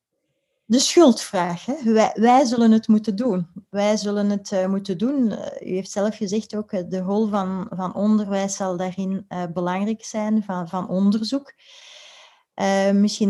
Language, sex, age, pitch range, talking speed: Dutch, female, 30-49, 185-220 Hz, 165 wpm